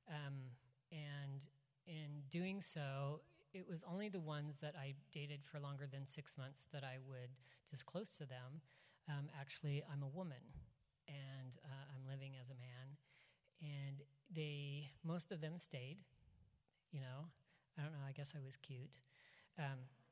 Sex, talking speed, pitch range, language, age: female, 160 wpm, 135-160 Hz, English, 40-59